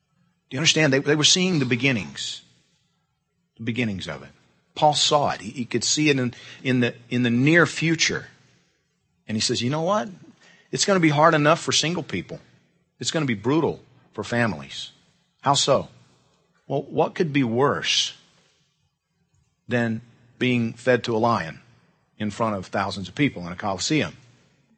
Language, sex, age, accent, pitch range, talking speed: English, male, 50-69, American, 115-155 Hz, 175 wpm